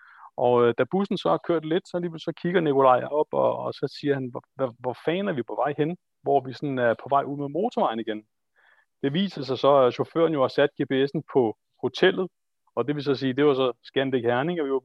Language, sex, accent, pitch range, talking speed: Danish, male, native, 130-160 Hz, 245 wpm